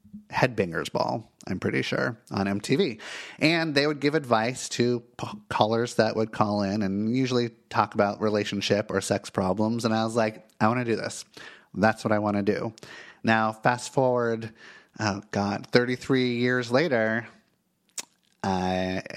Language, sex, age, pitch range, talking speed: English, male, 30-49, 105-130 Hz, 155 wpm